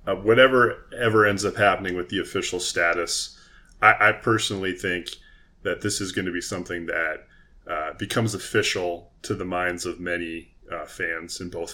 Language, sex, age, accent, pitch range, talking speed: English, male, 20-39, American, 90-115 Hz, 175 wpm